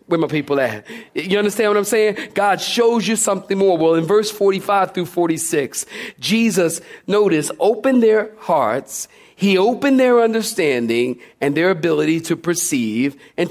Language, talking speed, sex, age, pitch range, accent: English, 155 wpm, male, 40-59, 155-210 Hz, American